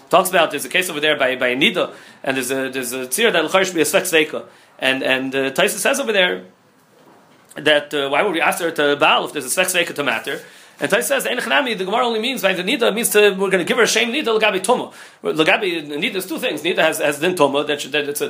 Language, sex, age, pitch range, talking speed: English, male, 40-59, 150-220 Hz, 250 wpm